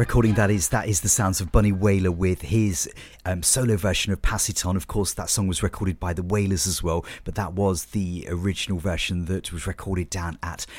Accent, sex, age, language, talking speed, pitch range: British, male, 40-59, English, 230 wpm, 90-105 Hz